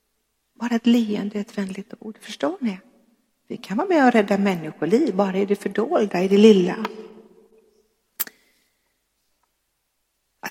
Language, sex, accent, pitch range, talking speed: Swedish, female, native, 210-280 Hz, 145 wpm